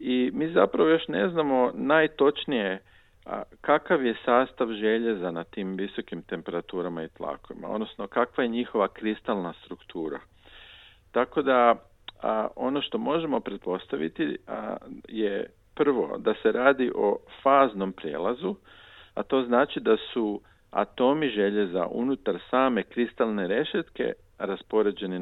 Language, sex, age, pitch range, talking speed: Croatian, male, 50-69, 95-125 Hz, 115 wpm